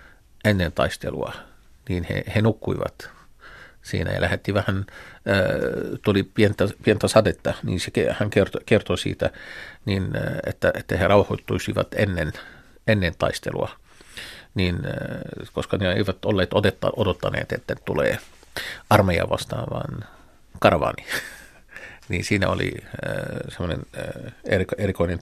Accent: native